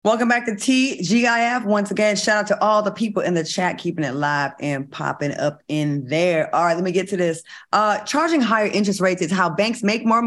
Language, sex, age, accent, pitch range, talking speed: English, female, 20-39, American, 165-220 Hz, 235 wpm